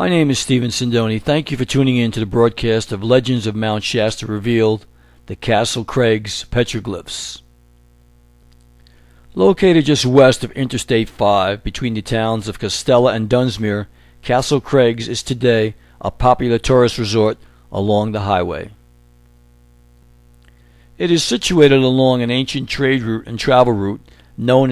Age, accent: 60-79, American